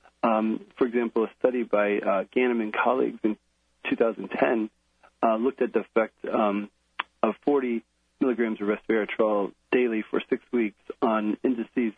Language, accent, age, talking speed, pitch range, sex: English, American, 40-59, 145 wpm, 100-115 Hz, male